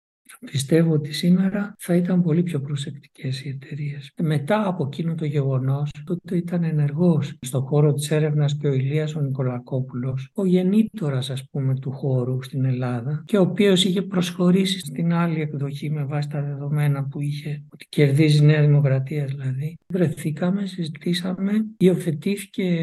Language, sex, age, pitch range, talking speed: Greek, male, 60-79, 140-175 Hz, 150 wpm